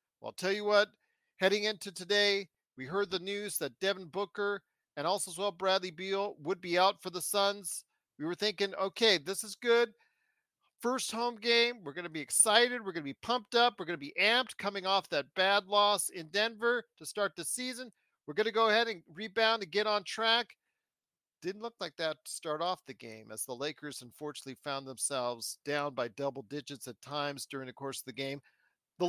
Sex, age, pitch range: male, 50-69, 150-205 Hz